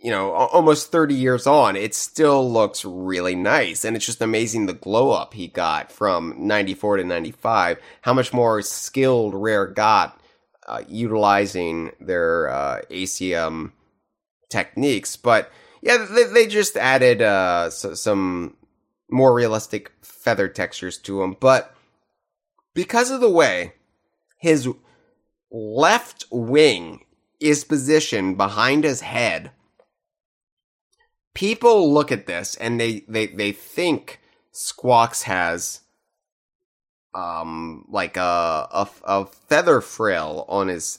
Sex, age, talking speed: male, 30-49, 120 wpm